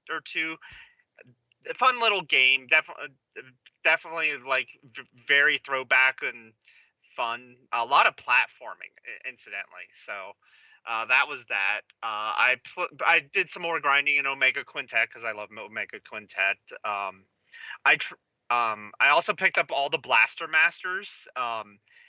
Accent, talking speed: American, 135 wpm